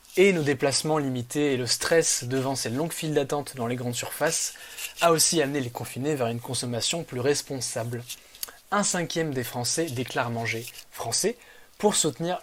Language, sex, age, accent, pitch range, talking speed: French, male, 20-39, French, 130-165 Hz, 170 wpm